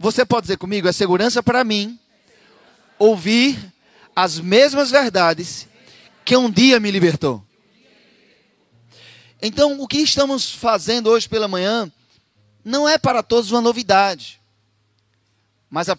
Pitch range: 170-235 Hz